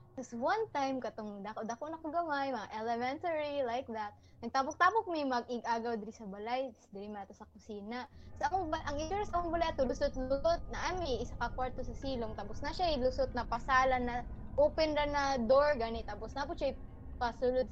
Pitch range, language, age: 245-315 Hz, Filipino, 20-39